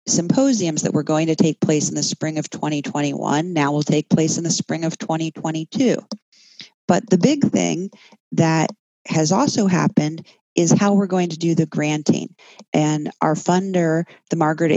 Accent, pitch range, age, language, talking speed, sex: American, 155-195 Hz, 40-59, English, 170 wpm, female